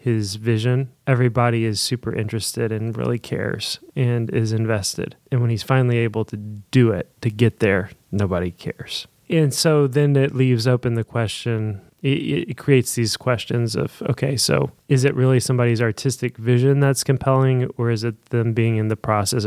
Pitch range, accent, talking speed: 115-130 Hz, American, 175 wpm